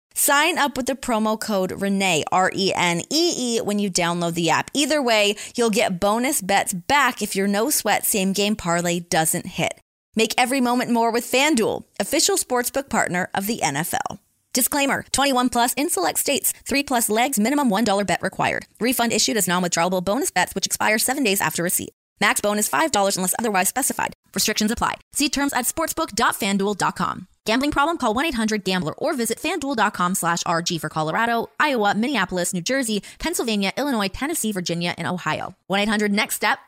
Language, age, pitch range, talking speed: English, 20-39, 185-250 Hz, 160 wpm